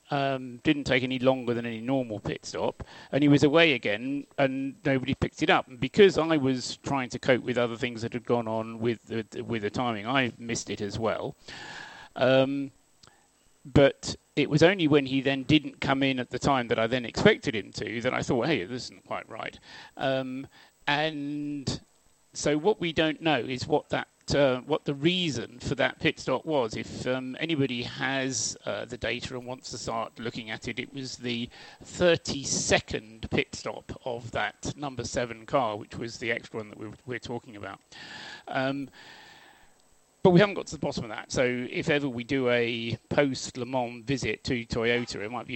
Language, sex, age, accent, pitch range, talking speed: English, male, 40-59, British, 115-140 Hz, 200 wpm